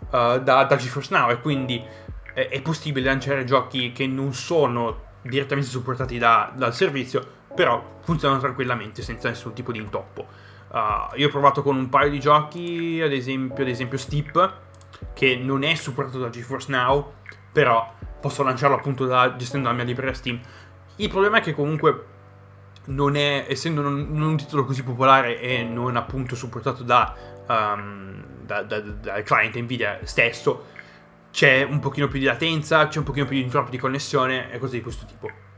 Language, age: Italian, 20-39